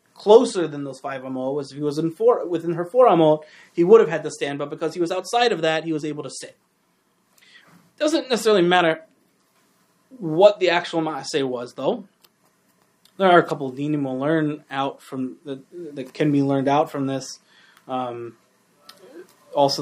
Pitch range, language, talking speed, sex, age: 130-175 Hz, English, 190 wpm, male, 20-39